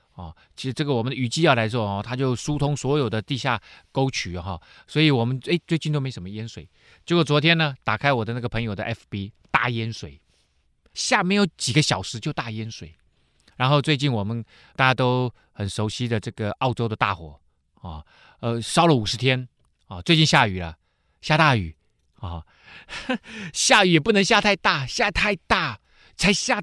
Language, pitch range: Chinese, 95-155 Hz